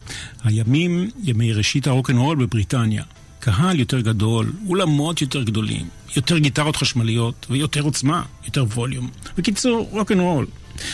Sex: male